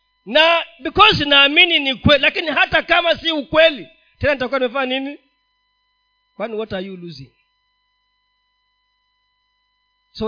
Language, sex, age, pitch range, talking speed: Swahili, male, 40-59, 255-375 Hz, 125 wpm